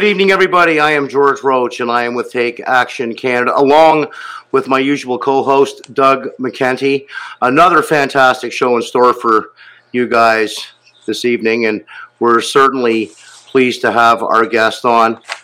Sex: male